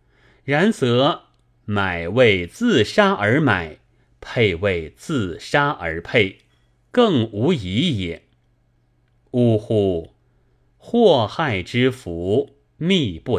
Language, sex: Chinese, male